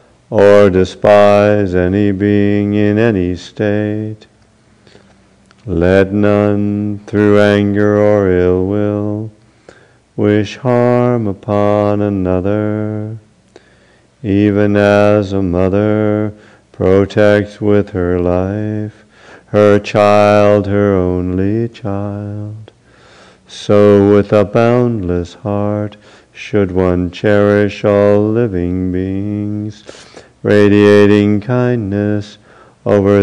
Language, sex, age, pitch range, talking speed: English, male, 50-69, 100-105 Hz, 80 wpm